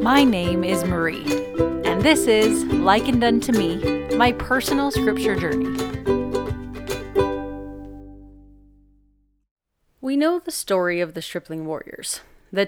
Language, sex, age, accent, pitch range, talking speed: English, female, 30-49, American, 165-220 Hz, 110 wpm